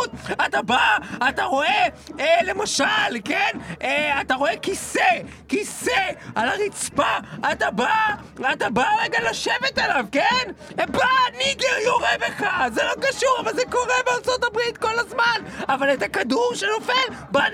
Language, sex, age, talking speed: Hebrew, male, 30-49, 140 wpm